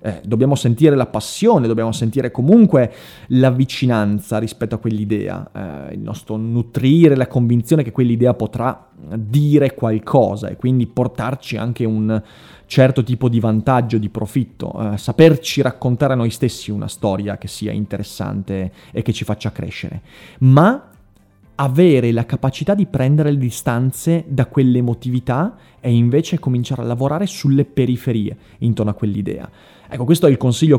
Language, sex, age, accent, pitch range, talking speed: Italian, male, 30-49, native, 110-135 Hz, 145 wpm